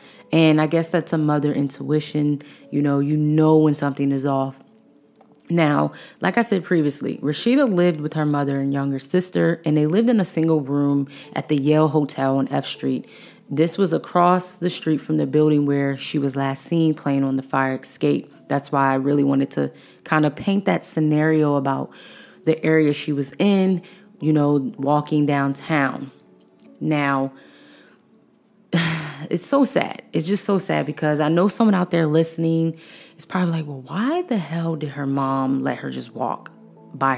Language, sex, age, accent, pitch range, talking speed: English, female, 20-39, American, 140-175 Hz, 180 wpm